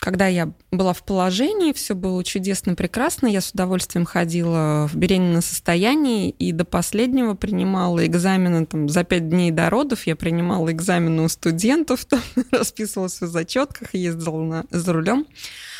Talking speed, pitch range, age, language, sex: 150 wpm, 180-265 Hz, 20-39, Russian, female